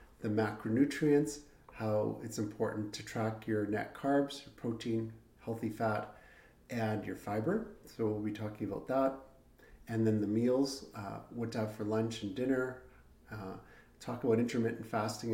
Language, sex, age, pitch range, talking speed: English, male, 40-59, 110-125 Hz, 155 wpm